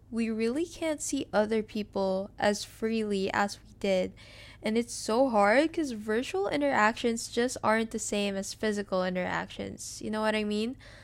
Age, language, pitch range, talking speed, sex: 10-29, English, 205-240 Hz, 165 wpm, female